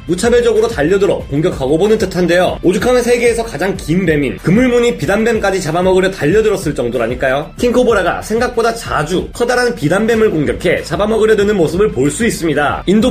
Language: Korean